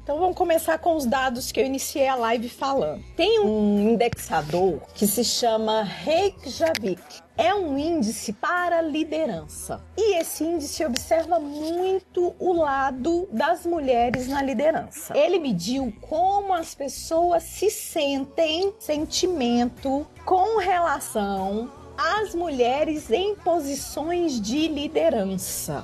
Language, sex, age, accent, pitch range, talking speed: Portuguese, female, 40-59, Brazilian, 225-340 Hz, 120 wpm